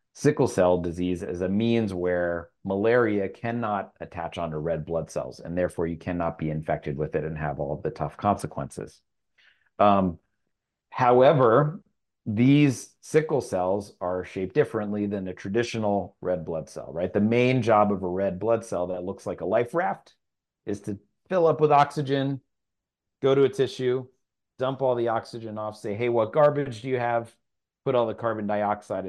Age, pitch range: 30-49, 90-120 Hz